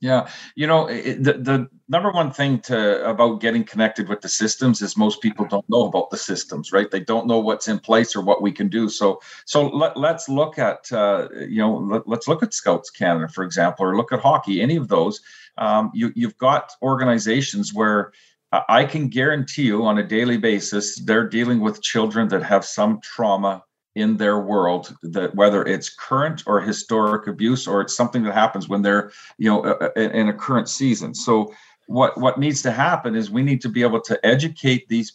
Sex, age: male, 50-69